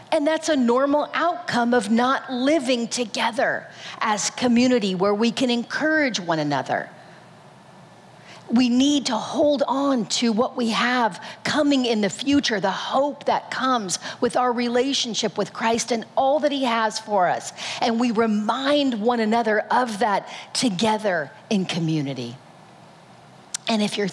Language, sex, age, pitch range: English, female, 40-59, 215-265 Hz